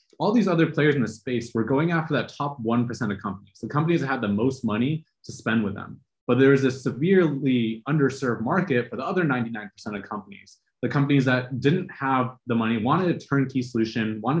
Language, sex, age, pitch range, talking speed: English, male, 20-39, 115-145 Hz, 210 wpm